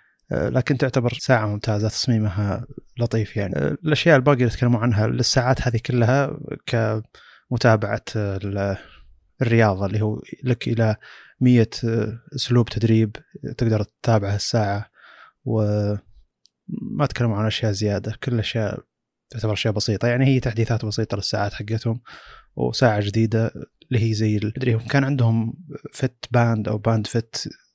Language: Arabic